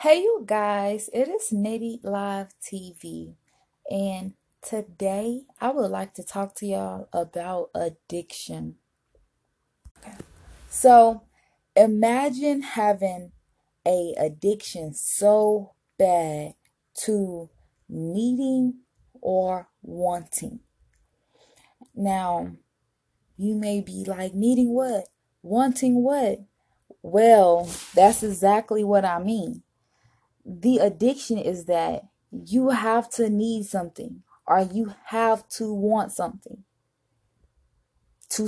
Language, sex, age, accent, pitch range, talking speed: English, female, 20-39, American, 180-240 Hz, 95 wpm